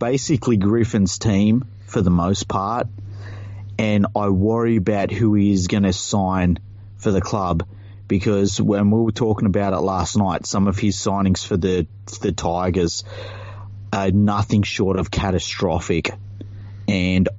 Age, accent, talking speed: 30-49, Australian, 150 wpm